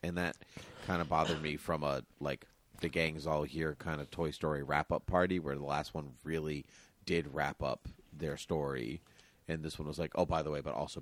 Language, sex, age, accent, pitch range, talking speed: English, male, 30-49, American, 75-95 Hz, 225 wpm